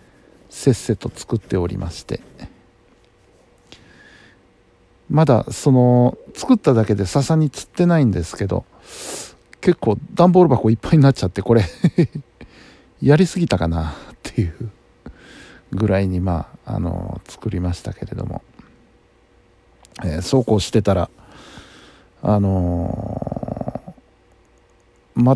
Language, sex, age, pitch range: Japanese, male, 60-79, 95-150 Hz